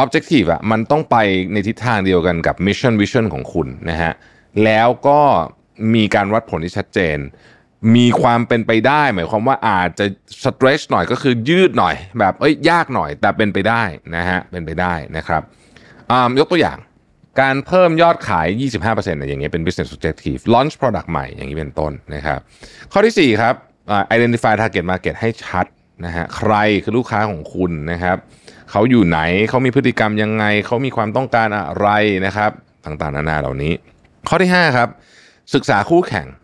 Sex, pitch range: male, 95-125 Hz